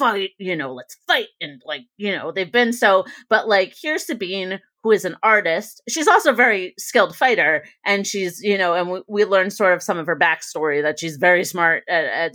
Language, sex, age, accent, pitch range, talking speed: English, female, 30-49, American, 165-210 Hz, 220 wpm